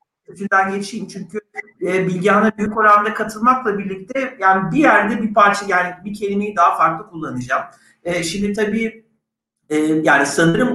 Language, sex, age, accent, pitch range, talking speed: Turkish, male, 50-69, native, 165-220 Hz, 150 wpm